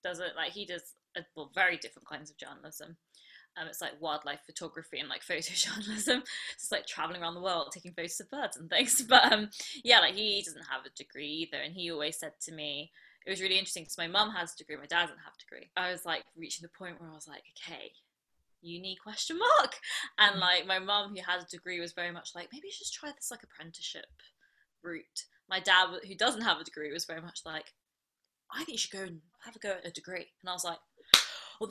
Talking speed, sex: 235 wpm, female